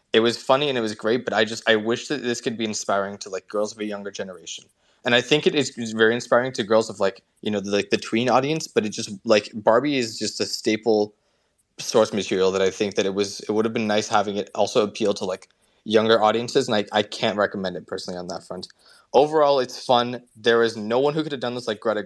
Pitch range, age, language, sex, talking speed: 105-125 Hz, 20-39, English, male, 260 wpm